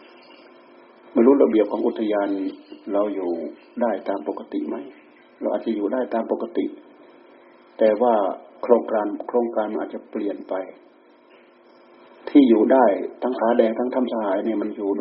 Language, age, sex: Thai, 60-79, male